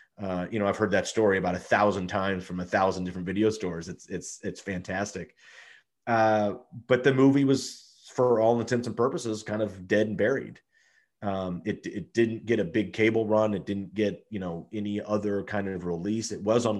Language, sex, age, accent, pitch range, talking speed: English, male, 30-49, American, 95-110 Hz, 205 wpm